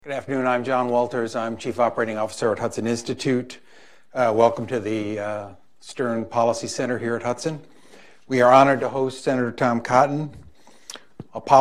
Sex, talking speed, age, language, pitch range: male, 165 wpm, 50-69, English, 115-130 Hz